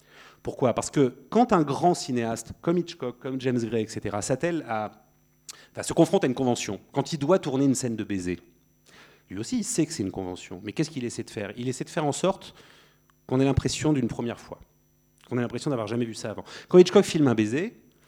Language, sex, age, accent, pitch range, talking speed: English, male, 30-49, French, 105-140 Hz, 220 wpm